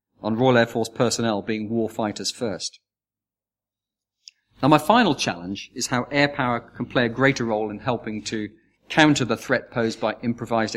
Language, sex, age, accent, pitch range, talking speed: English, male, 40-59, British, 110-130 Hz, 175 wpm